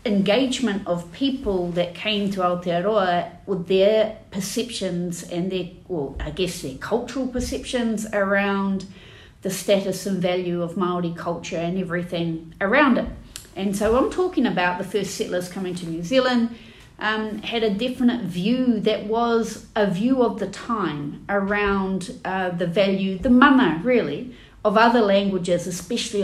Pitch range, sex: 180-220 Hz, female